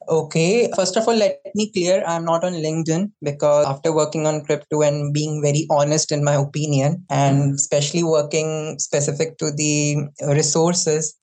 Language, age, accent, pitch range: English, 20-39, Indian, 150-180 Hz